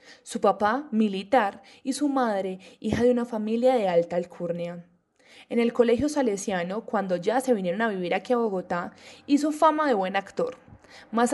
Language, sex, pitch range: Spanish, female, 205-260 Hz